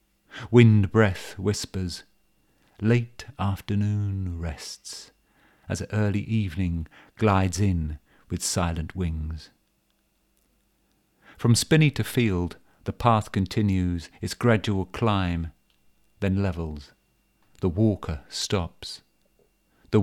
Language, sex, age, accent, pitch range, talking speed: English, male, 50-69, British, 85-110 Hz, 90 wpm